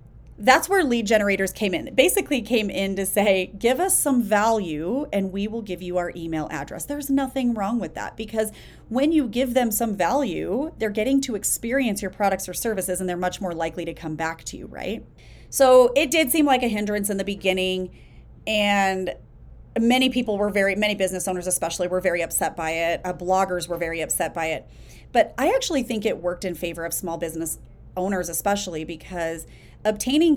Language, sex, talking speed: English, female, 195 wpm